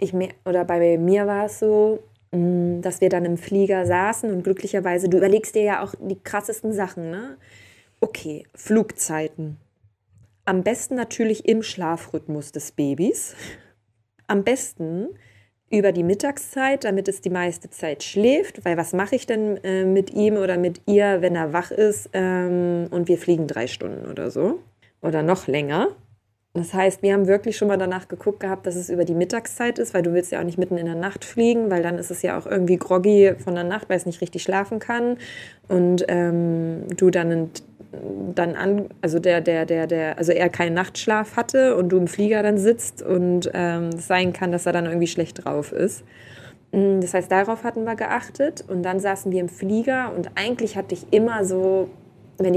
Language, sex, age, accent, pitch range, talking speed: German, female, 20-39, German, 170-200 Hz, 185 wpm